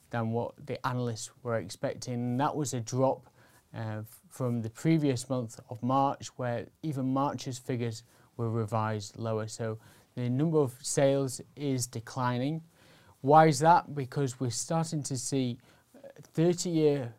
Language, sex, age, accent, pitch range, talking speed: English, male, 30-49, British, 120-140 Hz, 140 wpm